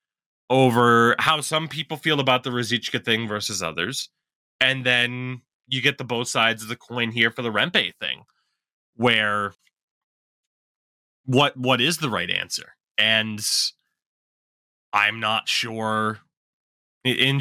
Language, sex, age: English, male, 20-39